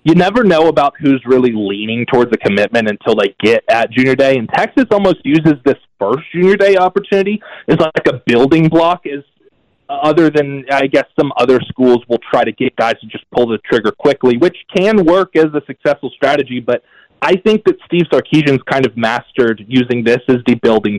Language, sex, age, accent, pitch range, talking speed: English, male, 30-49, American, 120-165 Hz, 200 wpm